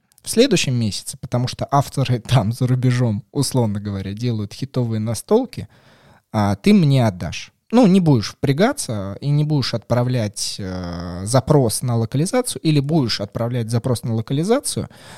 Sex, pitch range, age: male, 110-150 Hz, 20-39